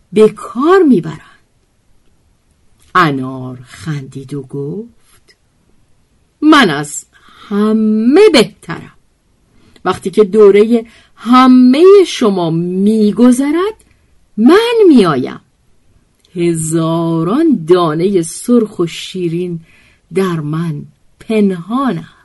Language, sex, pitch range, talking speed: Persian, female, 165-255 Hz, 70 wpm